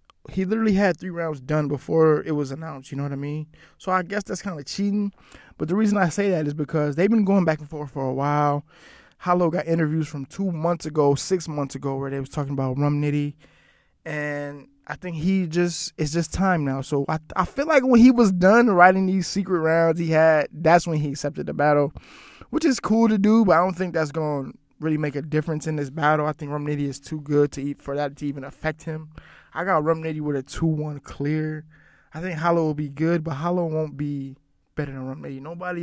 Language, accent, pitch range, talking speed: English, American, 145-175 Hz, 240 wpm